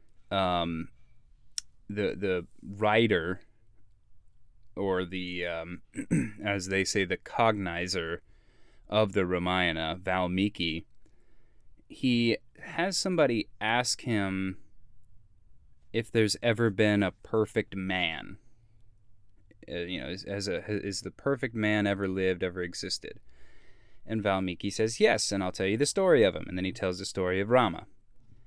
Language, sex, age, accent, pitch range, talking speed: English, male, 20-39, American, 95-110 Hz, 135 wpm